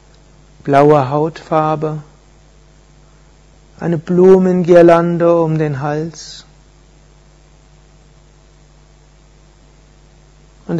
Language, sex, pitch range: German, male, 155-165 Hz